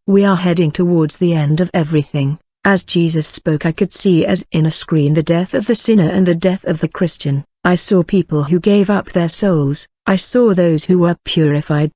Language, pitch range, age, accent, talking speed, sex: English, 160-190 Hz, 50-69, British, 215 wpm, female